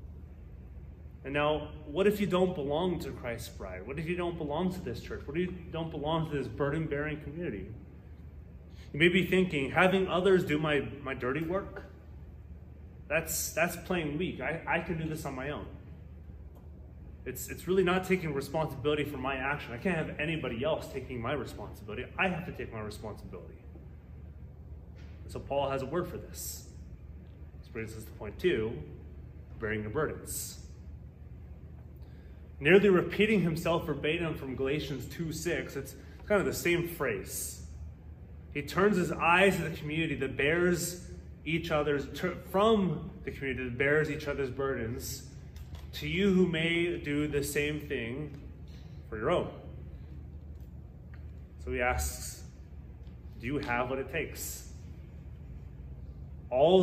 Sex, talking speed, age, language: male, 150 wpm, 30-49, English